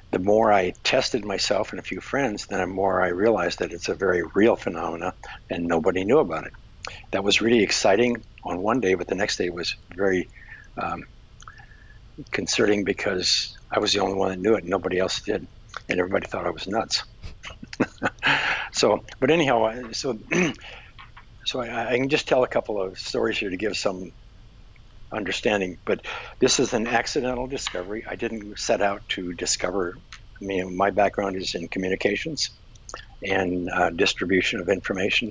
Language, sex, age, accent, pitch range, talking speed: English, male, 60-79, American, 95-110 Hz, 170 wpm